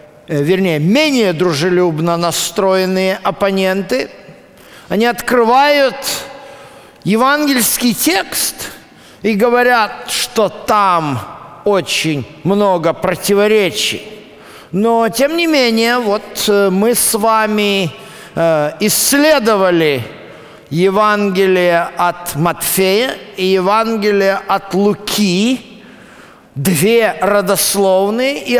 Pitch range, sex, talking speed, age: 170-230 Hz, male, 75 wpm, 50-69